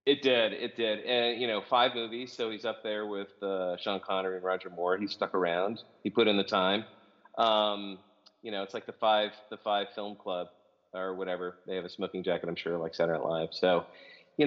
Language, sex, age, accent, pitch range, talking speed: English, male, 30-49, American, 95-120 Hz, 225 wpm